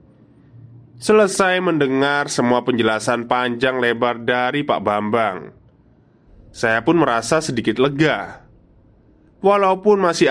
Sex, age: male, 20-39